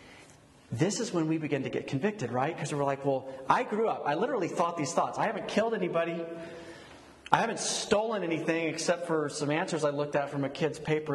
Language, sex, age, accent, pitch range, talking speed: English, male, 30-49, American, 145-190 Hz, 215 wpm